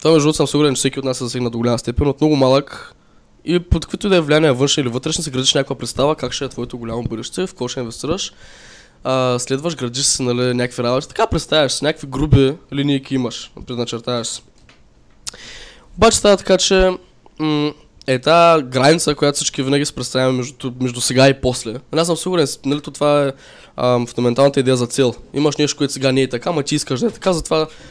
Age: 10-29